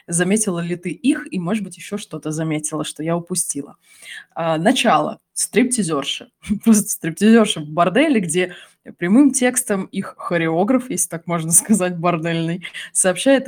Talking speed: 135 wpm